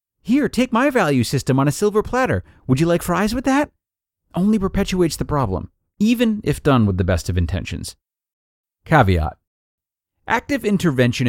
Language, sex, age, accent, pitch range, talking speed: English, male, 30-49, American, 95-150 Hz, 160 wpm